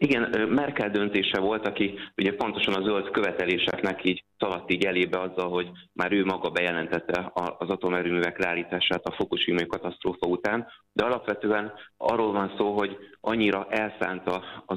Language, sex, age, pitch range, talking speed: Hungarian, male, 30-49, 90-105 Hz, 145 wpm